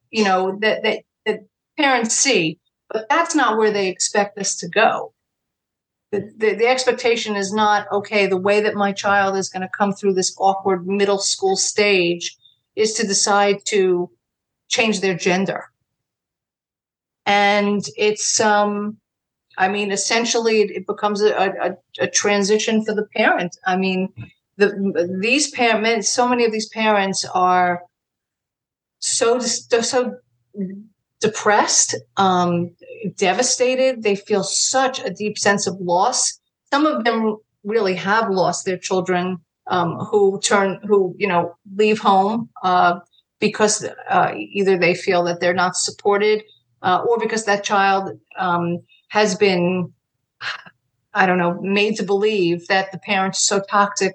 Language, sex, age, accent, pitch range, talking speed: English, female, 50-69, American, 185-215 Hz, 145 wpm